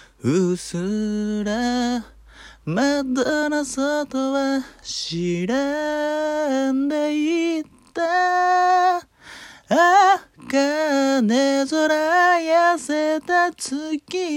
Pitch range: 265-350 Hz